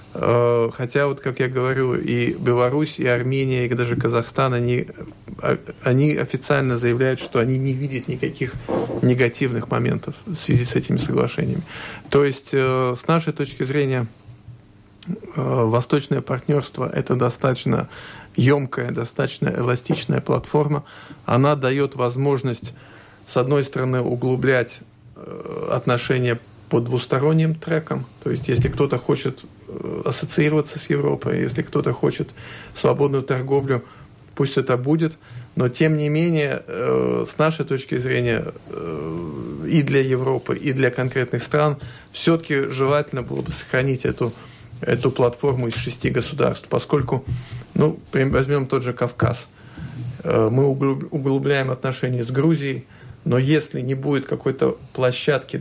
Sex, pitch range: male, 120-145 Hz